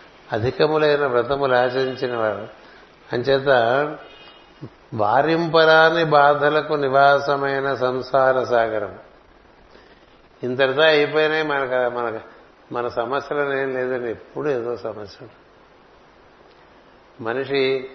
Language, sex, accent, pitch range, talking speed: Telugu, male, native, 115-140 Hz, 75 wpm